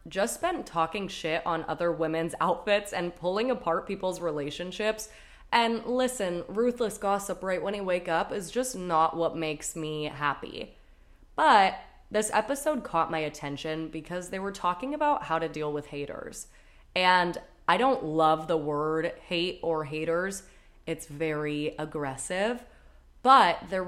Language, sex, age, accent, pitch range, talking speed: English, female, 20-39, American, 155-195 Hz, 150 wpm